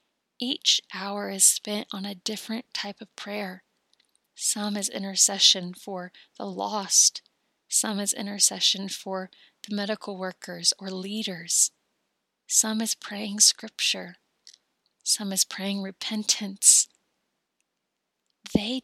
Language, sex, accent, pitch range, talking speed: English, female, American, 190-215 Hz, 110 wpm